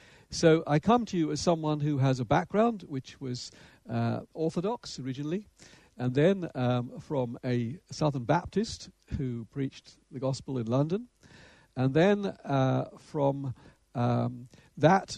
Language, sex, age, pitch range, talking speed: Danish, male, 60-79, 125-160 Hz, 140 wpm